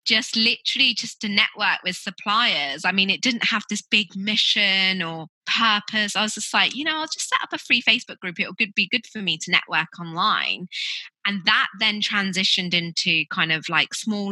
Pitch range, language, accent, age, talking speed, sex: 165-205 Hz, English, British, 20-39, 205 wpm, female